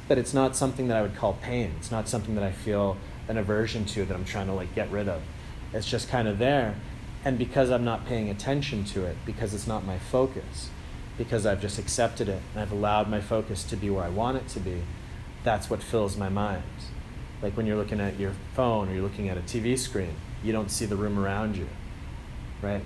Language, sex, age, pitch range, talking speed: English, male, 30-49, 95-115 Hz, 235 wpm